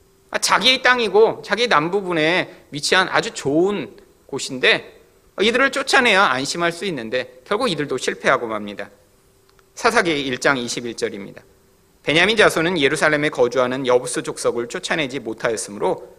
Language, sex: Korean, male